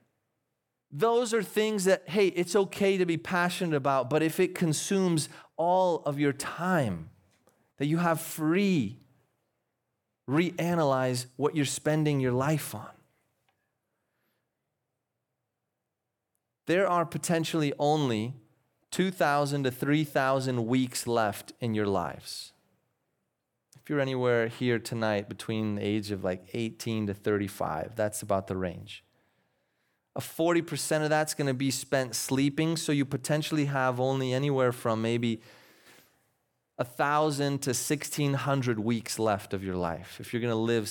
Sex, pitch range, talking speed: male, 115-155 Hz, 130 wpm